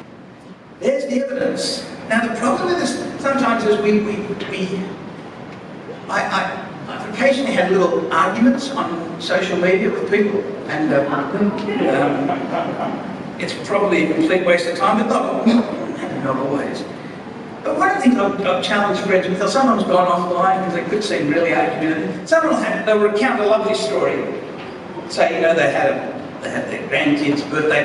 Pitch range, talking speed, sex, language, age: 180-245 Hz, 170 wpm, male, English, 60-79